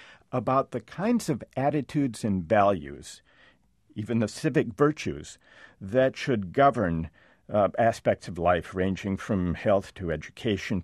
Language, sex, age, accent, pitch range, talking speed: English, male, 50-69, American, 95-135 Hz, 125 wpm